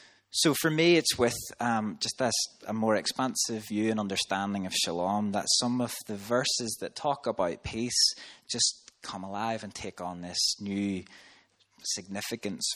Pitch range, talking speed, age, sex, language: 90-105 Hz, 160 wpm, 20-39, male, English